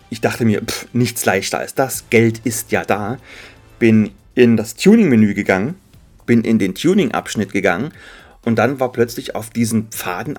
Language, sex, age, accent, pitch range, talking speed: German, male, 30-49, German, 105-130 Hz, 170 wpm